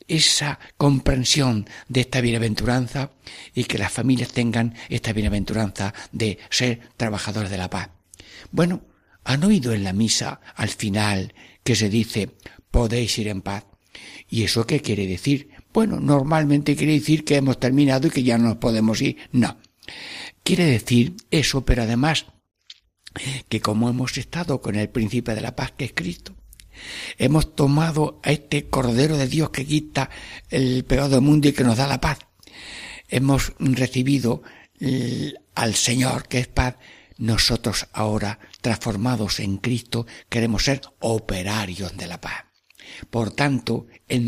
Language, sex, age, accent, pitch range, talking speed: Spanish, male, 60-79, Spanish, 105-135 Hz, 150 wpm